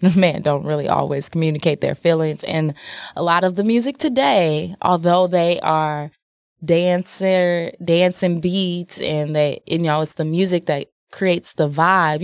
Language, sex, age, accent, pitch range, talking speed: English, female, 20-39, American, 150-185 Hz, 160 wpm